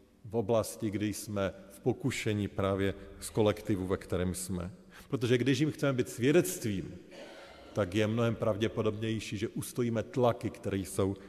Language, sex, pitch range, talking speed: Slovak, male, 100-115 Hz, 145 wpm